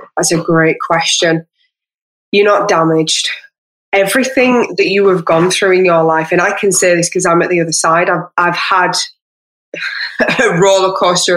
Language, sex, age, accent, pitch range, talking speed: English, female, 20-39, British, 170-205 Hz, 175 wpm